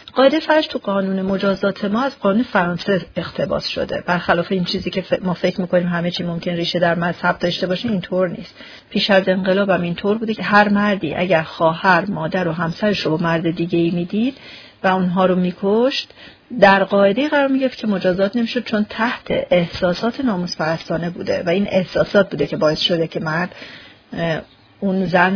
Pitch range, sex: 175-210 Hz, female